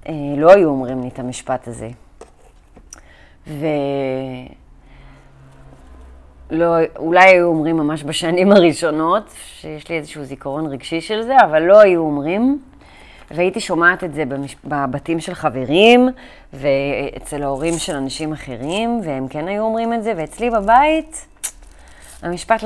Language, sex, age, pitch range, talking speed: Hebrew, female, 30-49, 140-190 Hz, 125 wpm